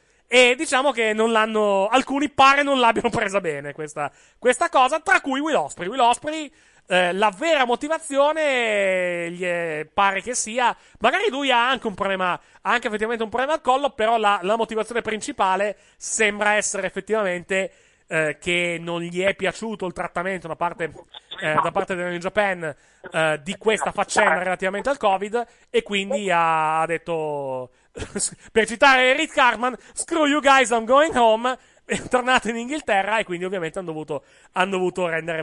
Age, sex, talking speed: 30-49, male, 170 wpm